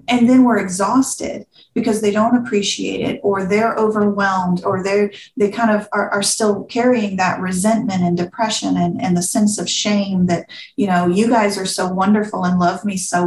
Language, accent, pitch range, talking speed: English, American, 190-225 Hz, 195 wpm